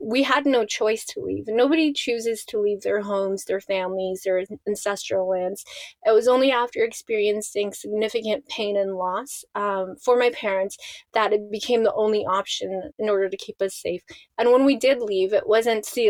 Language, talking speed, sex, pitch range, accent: English, 185 wpm, female, 200-240 Hz, American